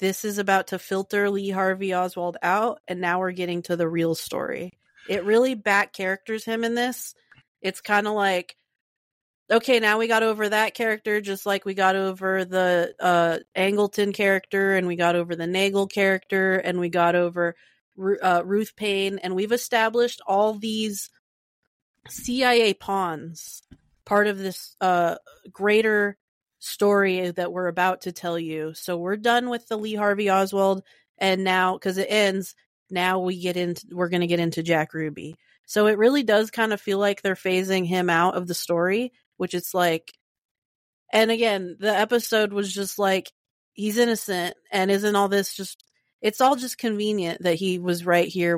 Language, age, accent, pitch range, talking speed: English, 30-49, American, 175-210 Hz, 175 wpm